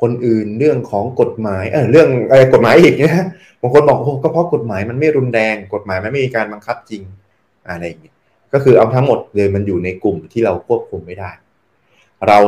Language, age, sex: Thai, 20-39, male